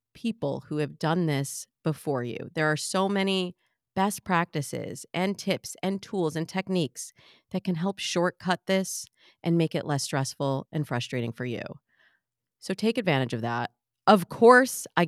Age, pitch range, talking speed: 30-49, 140-190 Hz, 165 wpm